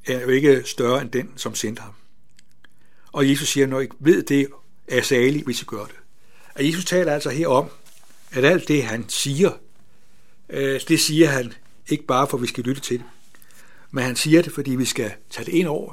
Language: Danish